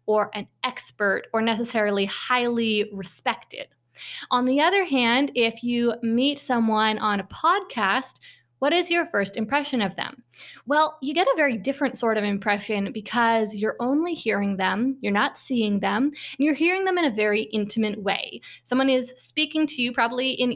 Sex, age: female, 20-39